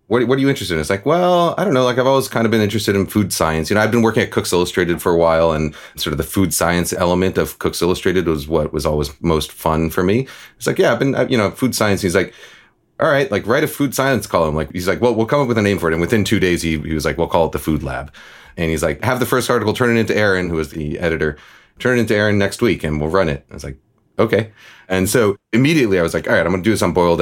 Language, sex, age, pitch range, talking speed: English, male, 30-49, 85-110 Hz, 305 wpm